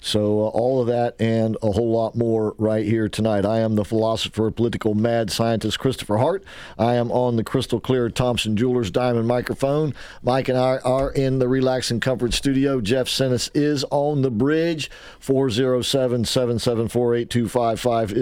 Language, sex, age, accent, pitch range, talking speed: English, male, 50-69, American, 105-130 Hz, 160 wpm